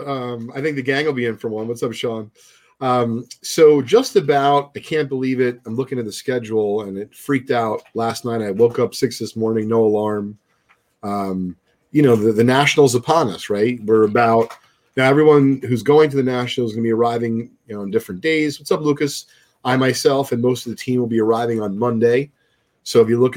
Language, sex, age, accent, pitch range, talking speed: English, male, 40-59, American, 105-135 Hz, 225 wpm